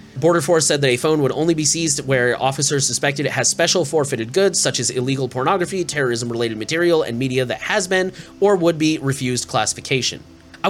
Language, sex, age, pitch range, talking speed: English, male, 30-49, 120-165 Hz, 195 wpm